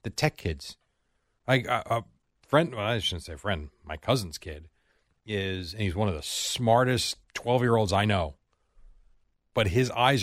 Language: English